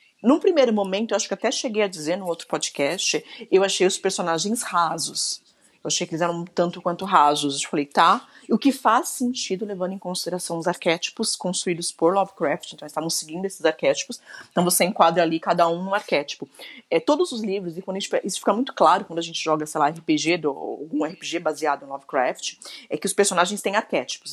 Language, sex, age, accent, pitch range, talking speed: Portuguese, female, 30-49, Brazilian, 175-235 Hz, 210 wpm